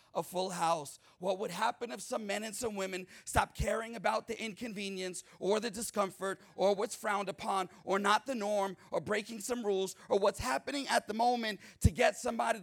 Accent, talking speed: American, 195 wpm